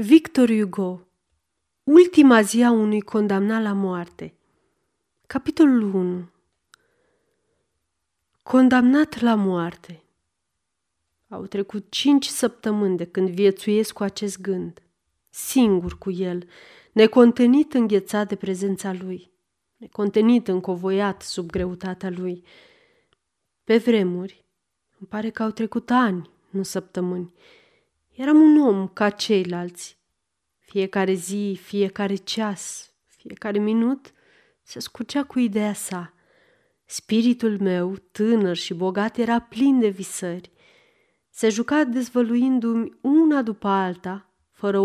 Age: 30-49